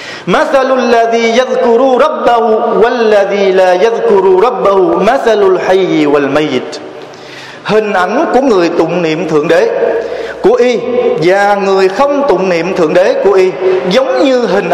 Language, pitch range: Vietnamese, 180-280 Hz